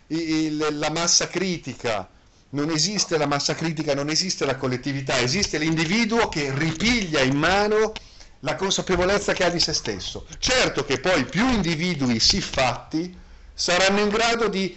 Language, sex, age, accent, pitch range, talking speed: Italian, male, 50-69, native, 140-200 Hz, 155 wpm